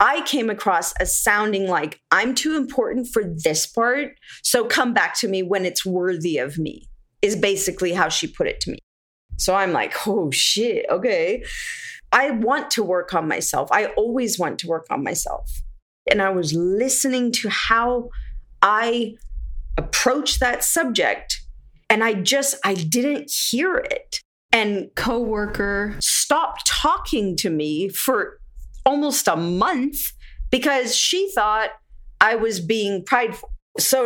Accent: American